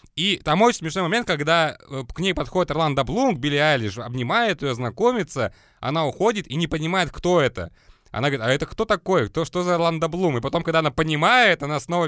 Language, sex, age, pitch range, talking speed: Russian, male, 20-39, 130-170 Hz, 205 wpm